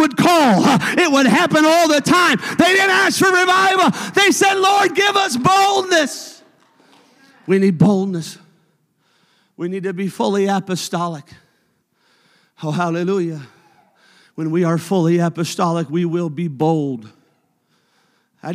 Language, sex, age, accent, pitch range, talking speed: English, male, 50-69, American, 150-195 Hz, 130 wpm